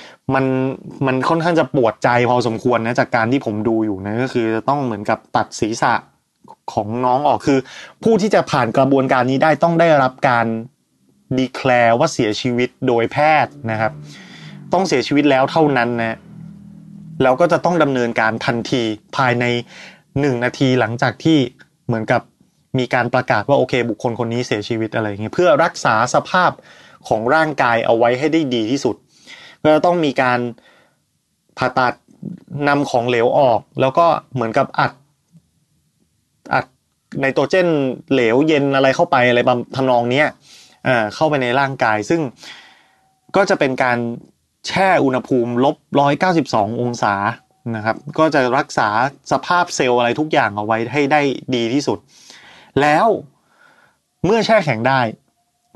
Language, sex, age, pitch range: Thai, male, 20-39, 120-150 Hz